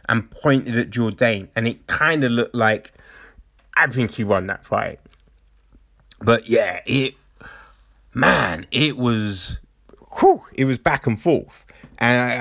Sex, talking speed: male, 145 wpm